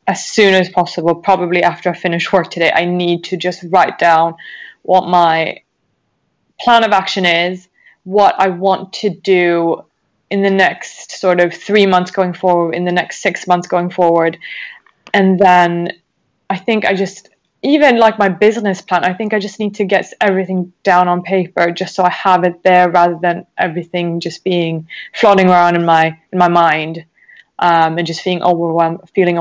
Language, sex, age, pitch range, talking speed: English, female, 20-39, 175-195 Hz, 180 wpm